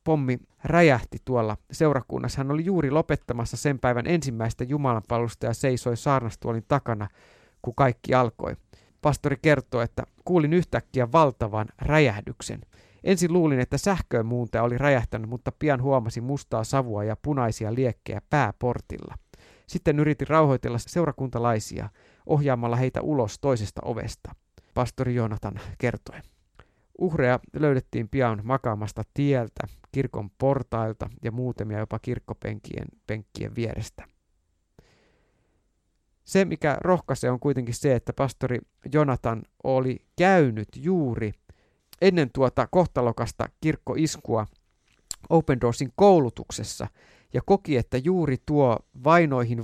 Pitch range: 110-145 Hz